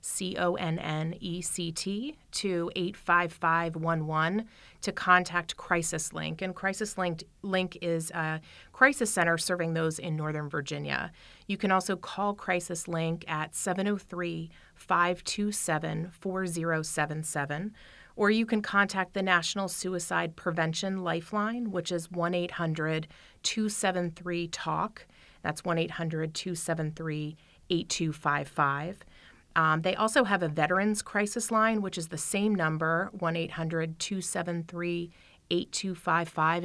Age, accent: 30-49, American